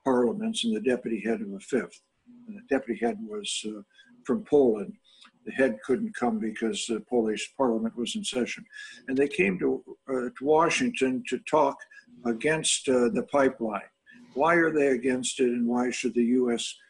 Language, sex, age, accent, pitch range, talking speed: English, male, 60-79, American, 120-155 Hz, 170 wpm